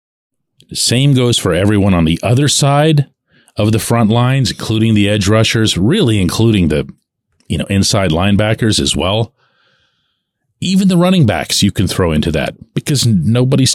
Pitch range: 95-135 Hz